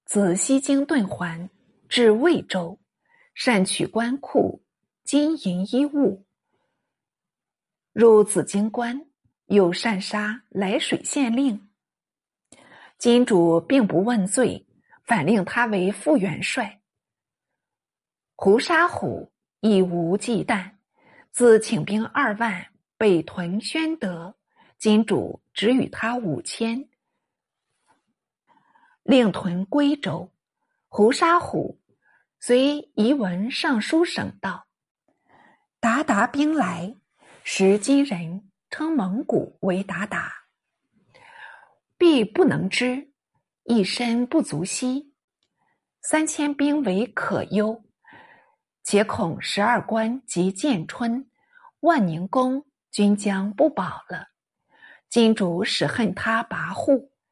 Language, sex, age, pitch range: Chinese, female, 50-69, 195-275 Hz